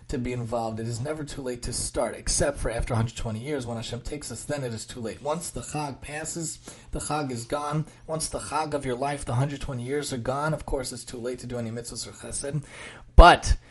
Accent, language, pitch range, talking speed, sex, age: American, English, 130-170 Hz, 240 wpm, male, 30-49